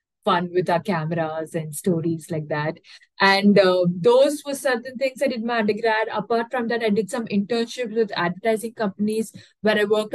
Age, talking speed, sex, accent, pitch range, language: 20-39, 185 wpm, female, Indian, 190-235 Hz, English